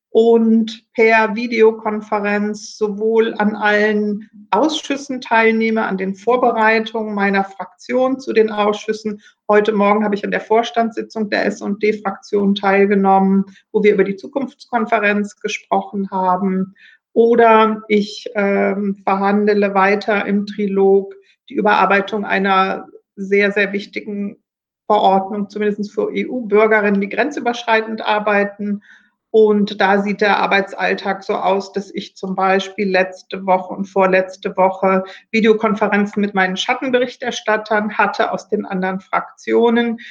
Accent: German